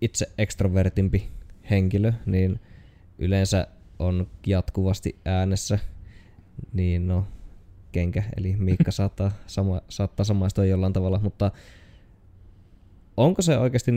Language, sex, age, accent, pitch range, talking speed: Finnish, male, 20-39, native, 95-105 Hz, 100 wpm